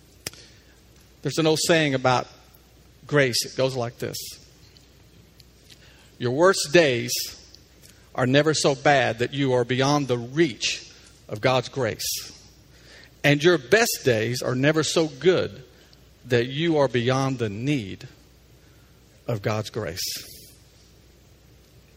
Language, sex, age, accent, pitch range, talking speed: English, male, 50-69, American, 125-170 Hz, 115 wpm